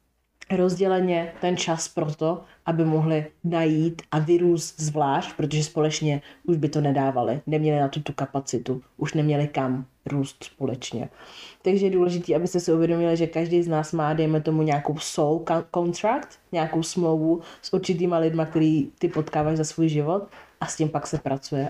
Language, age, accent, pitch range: Czech, 30-49, native, 140-170 Hz